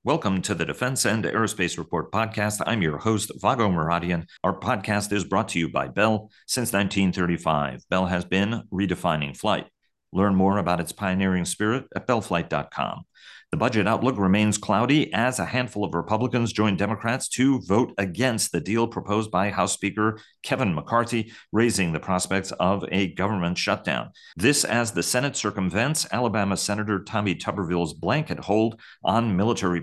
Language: English